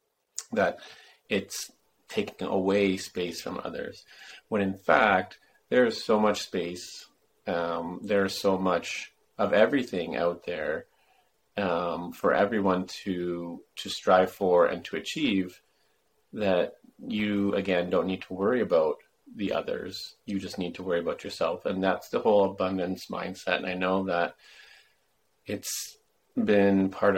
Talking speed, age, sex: 135 wpm, 30-49, male